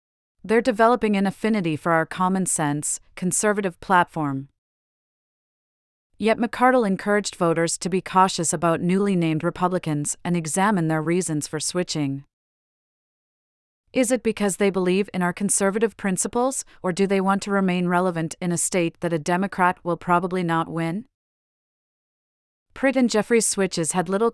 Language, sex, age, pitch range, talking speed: English, female, 30-49, 165-200 Hz, 145 wpm